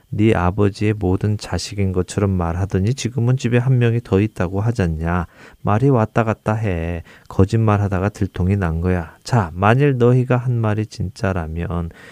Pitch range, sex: 95-120 Hz, male